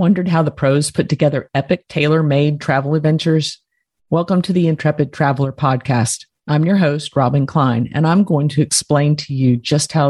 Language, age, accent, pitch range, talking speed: English, 40-59, American, 130-160 Hz, 185 wpm